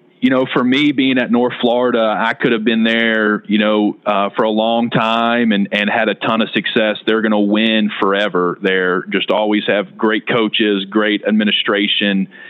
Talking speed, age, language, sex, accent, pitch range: 190 wpm, 30-49, English, male, American, 105-120 Hz